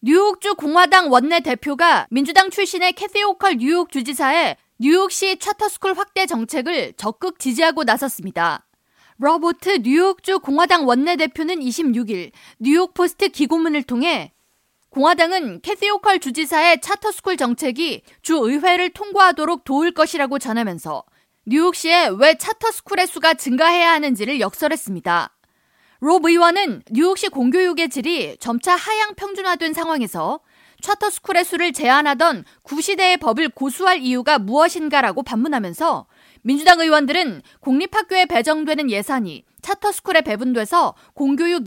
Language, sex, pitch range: Korean, female, 265-360 Hz